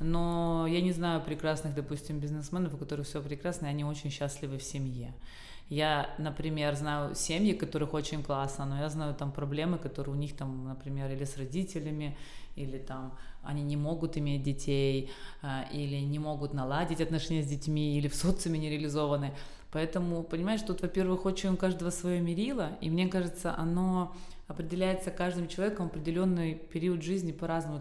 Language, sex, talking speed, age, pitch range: Russian, female, 165 wpm, 20-39, 145-180 Hz